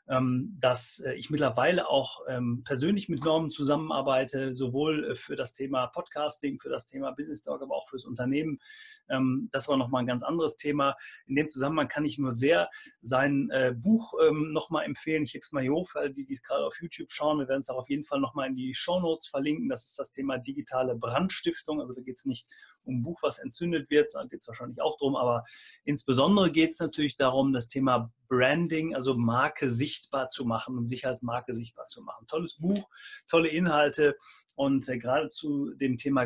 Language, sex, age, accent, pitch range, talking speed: German, male, 30-49, German, 130-155 Hz, 200 wpm